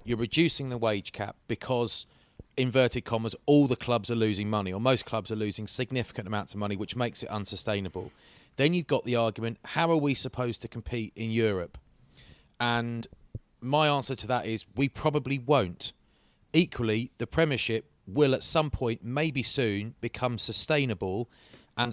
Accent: British